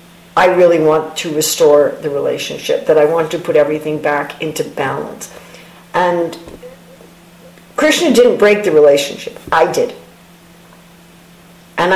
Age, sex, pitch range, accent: 50-69, female, 170-200 Hz, American